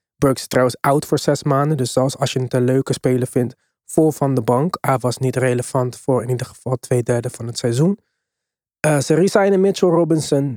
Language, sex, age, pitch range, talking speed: Dutch, male, 20-39, 135-170 Hz, 215 wpm